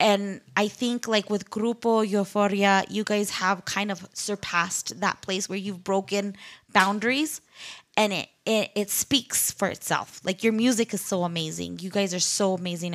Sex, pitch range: female, 185-230 Hz